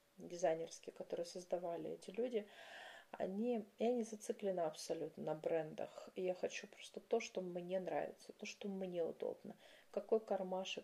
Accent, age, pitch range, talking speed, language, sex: native, 30-49, 170-220 Hz, 140 wpm, Russian, female